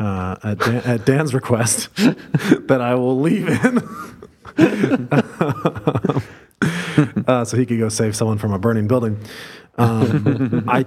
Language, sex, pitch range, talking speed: English, male, 105-140 Hz, 135 wpm